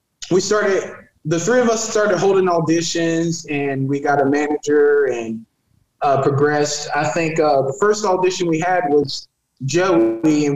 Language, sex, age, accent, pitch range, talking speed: English, male, 20-39, American, 135-170 Hz, 160 wpm